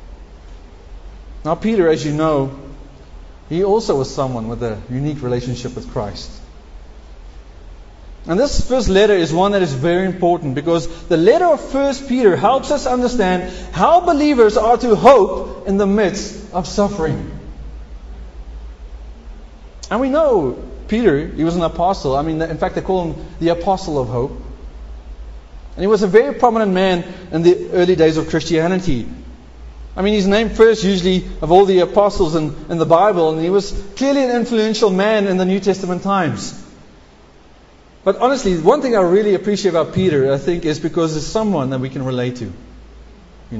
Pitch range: 125-210 Hz